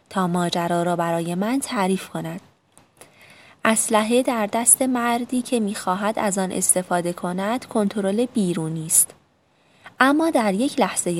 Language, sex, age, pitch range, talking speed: Persian, female, 20-39, 175-240 Hz, 125 wpm